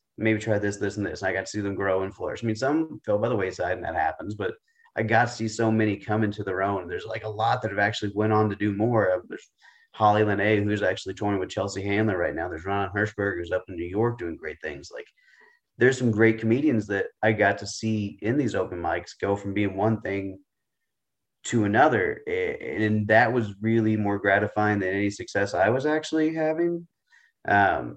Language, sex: English, male